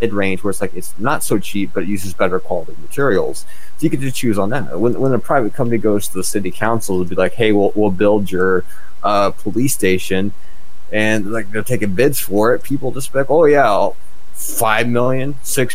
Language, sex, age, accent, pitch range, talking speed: English, male, 20-39, American, 95-120 Hz, 215 wpm